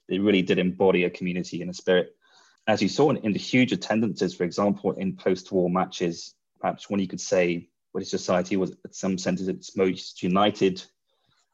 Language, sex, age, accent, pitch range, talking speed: English, male, 20-39, British, 90-100 Hz, 185 wpm